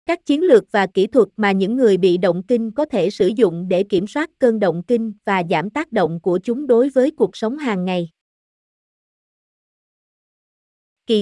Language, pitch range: Vietnamese, 190-245 Hz